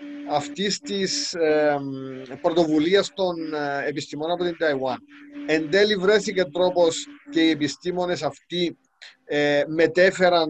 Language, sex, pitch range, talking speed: Greek, male, 135-180 Hz, 115 wpm